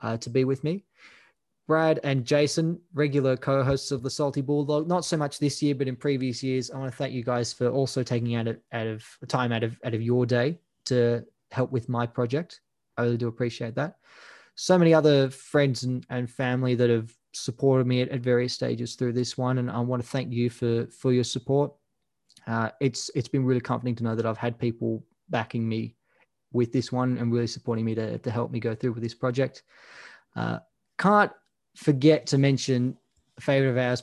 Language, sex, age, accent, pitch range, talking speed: English, male, 20-39, Australian, 120-140 Hz, 210 wpm